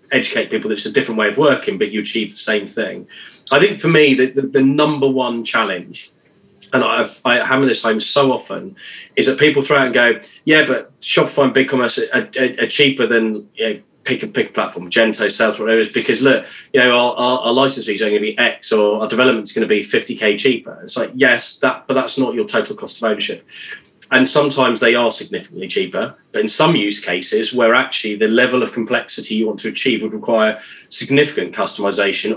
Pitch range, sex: 105-125 Hz, male